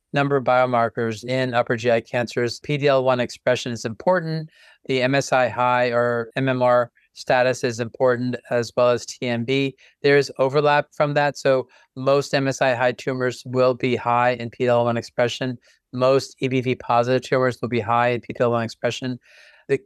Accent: American